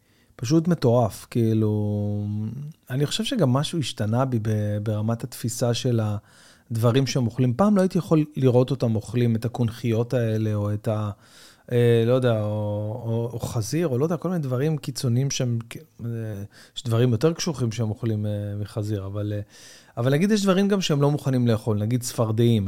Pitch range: 115-155 Hz